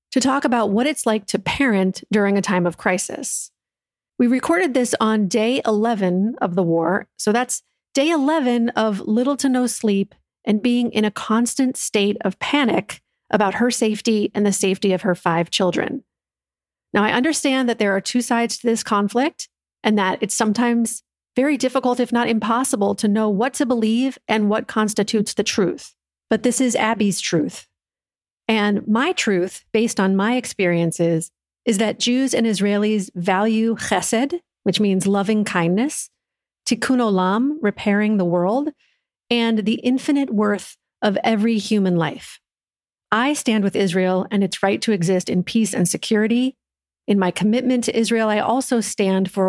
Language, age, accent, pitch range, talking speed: English, 40-59, American, 195-245 Hz, 165 wpm